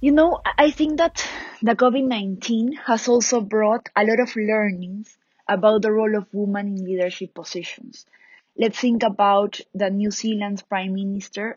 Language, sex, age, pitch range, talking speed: English, female, 20-39, 195-235 Hz, 155 wpm